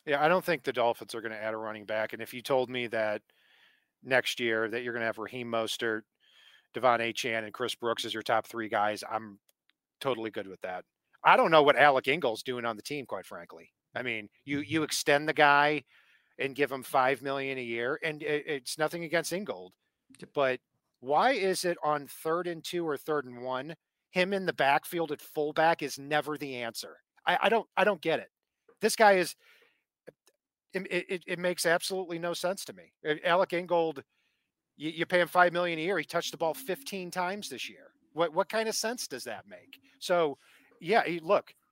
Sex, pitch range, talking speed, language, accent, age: male, 125-175 Hz, 210 wpm, English, American, 40-59